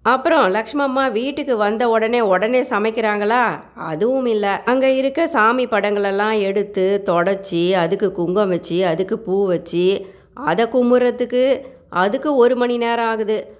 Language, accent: Tamil, native